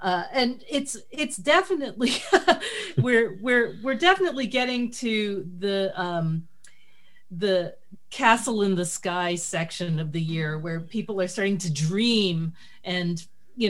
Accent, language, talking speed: American, English, 130 wpm